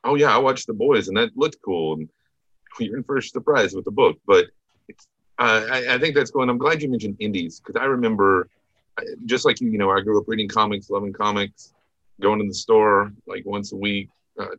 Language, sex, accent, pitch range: English, male, American, 95-160 Hz